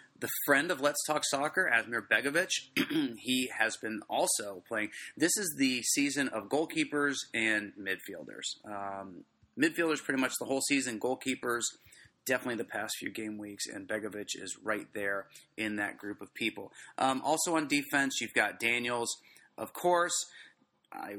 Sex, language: male, English